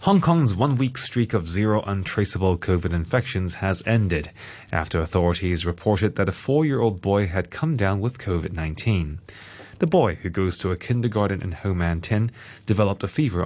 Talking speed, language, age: 165 wpm, English, 30-49